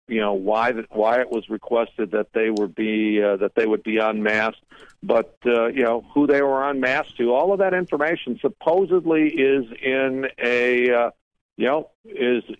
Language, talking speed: English, 185 wpm